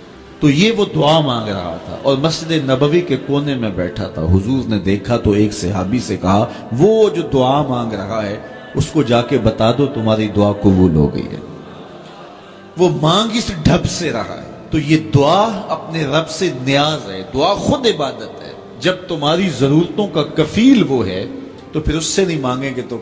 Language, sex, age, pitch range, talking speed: Urdu, male, 40-59, 110-160 Hz, 195 wpm